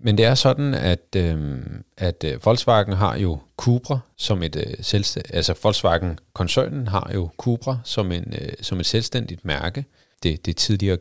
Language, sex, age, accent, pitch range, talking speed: Danish, male, 40-59, native, 90-120 Hz, 170 wpm